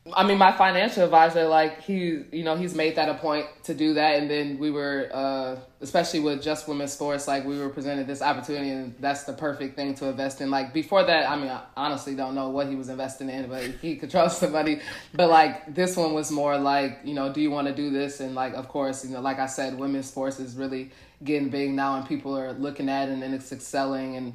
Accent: American